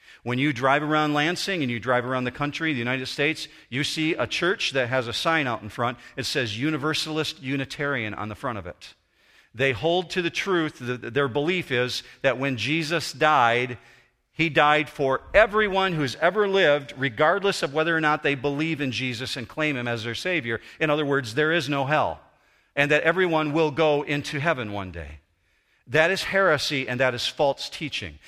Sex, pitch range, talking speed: male, 125-160 Hz, 195 wpm